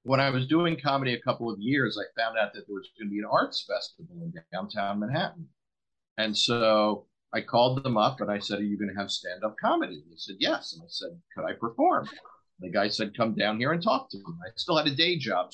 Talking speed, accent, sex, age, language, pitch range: 250 wpm, American, male, 50-69, English, 95-115 Hz